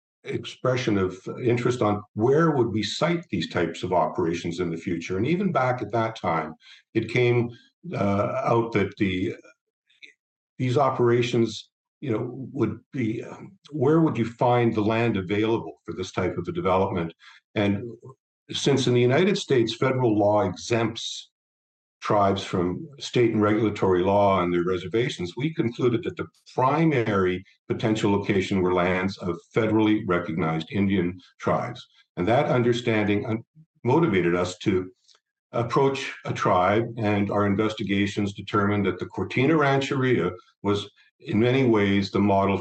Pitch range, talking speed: 100-125 Hz, 145 wpm